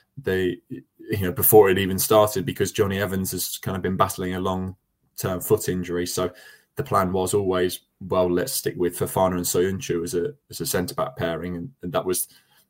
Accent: British